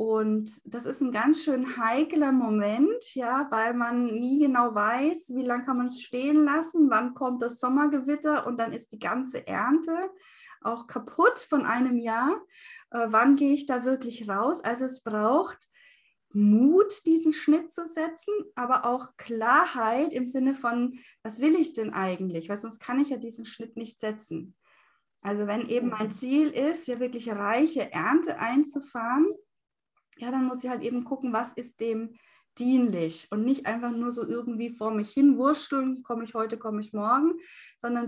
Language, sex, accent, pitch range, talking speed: German, female, German, 225-285 Hz, 175 wpm